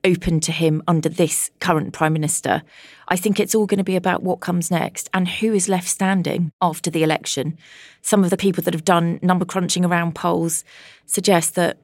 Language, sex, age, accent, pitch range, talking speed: English, female, 30-49, British, 155-180 Hz, 205 wpm